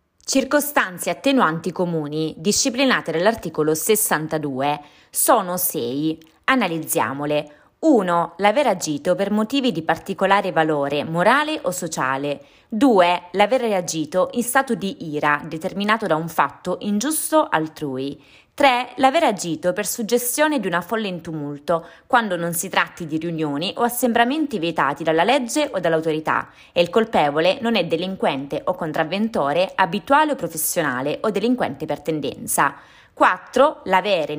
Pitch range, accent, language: 160-235 Hz, native, Italian